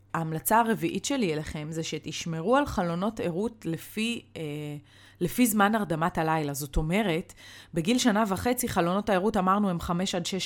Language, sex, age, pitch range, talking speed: Hebrew, female, 20-39, 150-195 Hz, 145 wpm